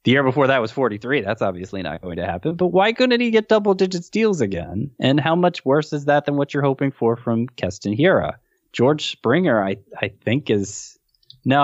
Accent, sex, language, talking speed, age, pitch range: American, male, English, 210 wpm, 20-39, 95-135 Hz